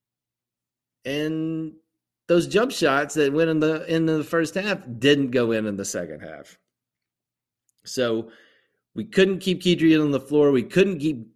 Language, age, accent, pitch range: English, 30-49, American, 105-160 Hz